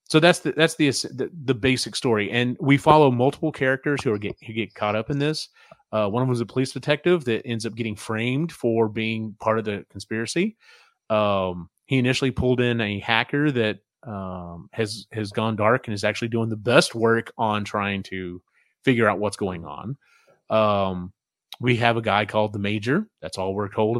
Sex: male